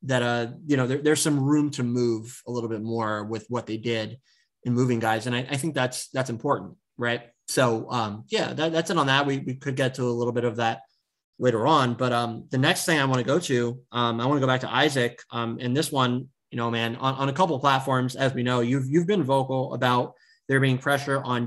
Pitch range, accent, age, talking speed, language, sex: 120-135 Hz, American, 20-39, 255 wpm, English, male